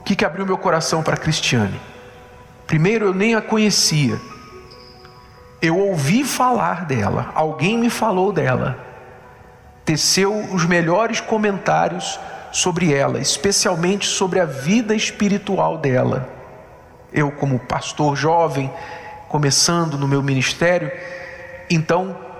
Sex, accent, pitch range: male, Brazilian, 150-210 Hz